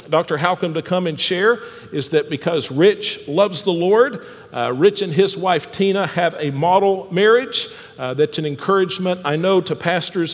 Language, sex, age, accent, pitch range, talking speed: English, male, 50-69, American, 145-200 Hz, 180 wpm